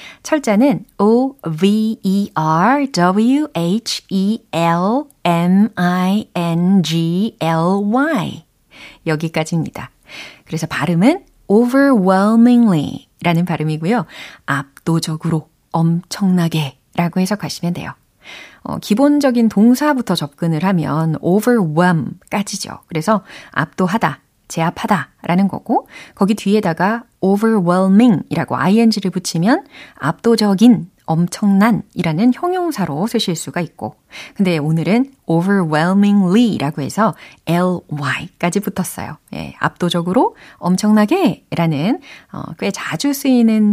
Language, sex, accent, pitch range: Korean, female, native, 165-225 Hz